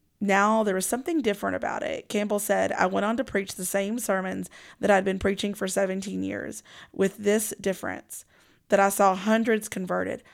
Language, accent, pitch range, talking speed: English, American, 190-220 Hz, 185 wpm